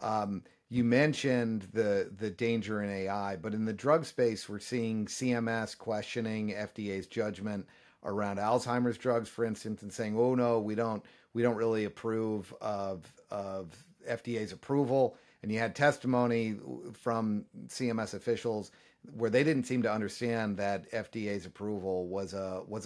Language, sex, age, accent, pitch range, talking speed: English, male, 50-69, American, 100-120 Hz, 150 wpm